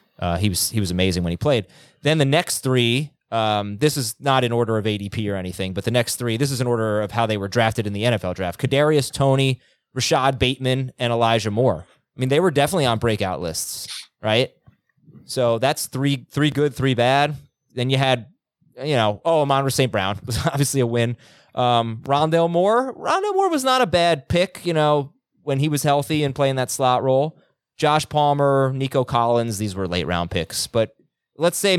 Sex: male